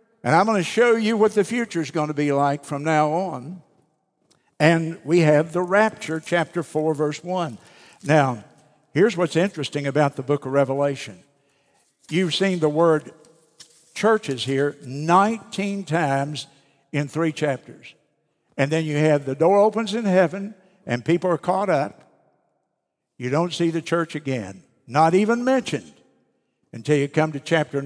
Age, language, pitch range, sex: 60-79, English, 140-175 Hz, male